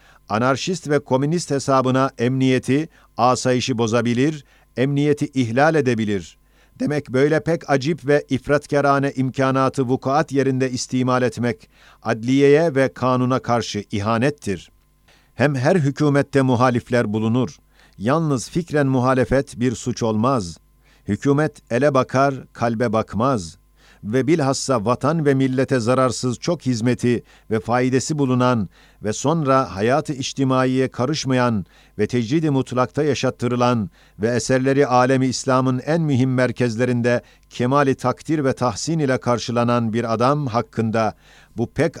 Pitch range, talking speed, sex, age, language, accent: 120-140 Hz, 115 wpm, male, 50-69, Turkish, native